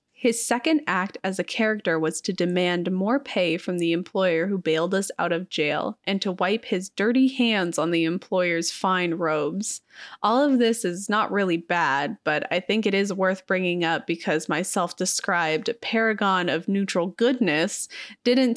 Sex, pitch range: female, 180-235 Hz